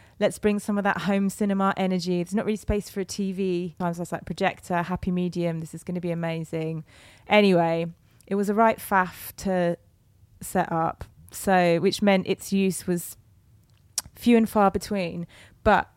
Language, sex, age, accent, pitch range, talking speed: English, female, 20-39, British, 165-195 Hz, 175 wpm